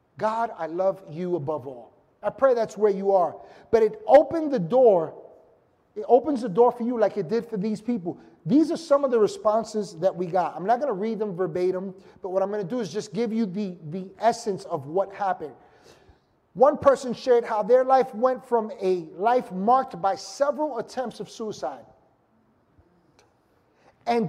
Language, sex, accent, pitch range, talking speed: English, male, American, 205-265 Hz, 195 wpm